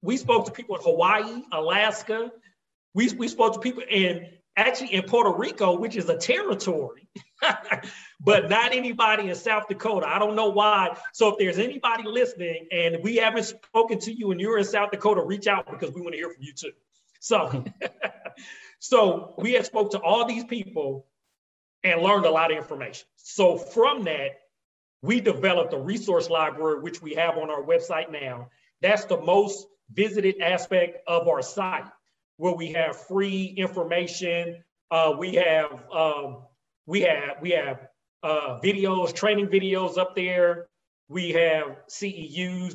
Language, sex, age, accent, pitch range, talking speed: English, male, 40-59, American, 160-215 Hz, 165 wpm